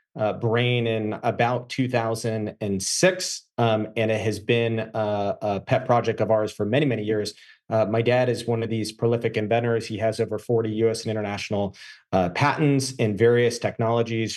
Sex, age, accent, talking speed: male, 30-49, American, 170 wpm